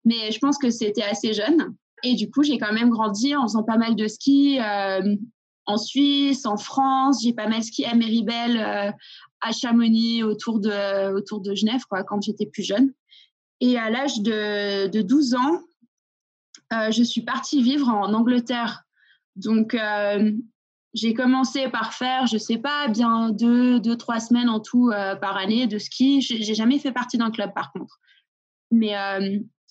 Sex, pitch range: female, 215-255 Hz